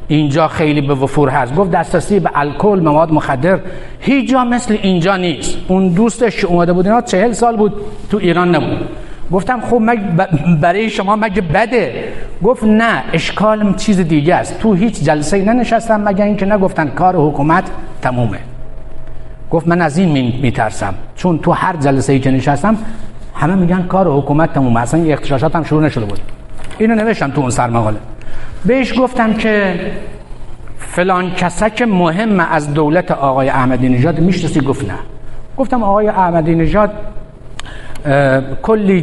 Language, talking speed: Persian, 155 wpm